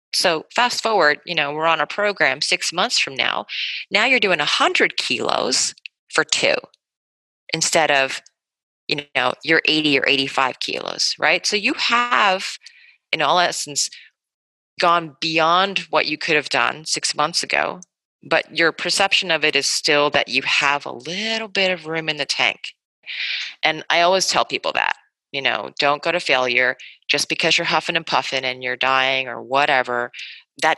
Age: 30-49